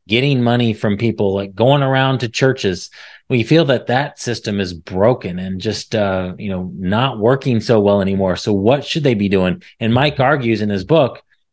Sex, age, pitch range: male, 30-49, 105-135 Hz